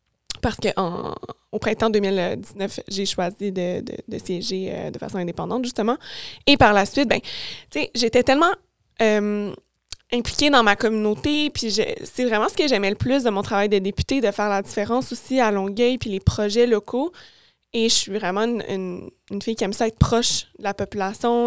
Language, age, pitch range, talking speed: French, 20-39, 195-230 Hz, 190 wpm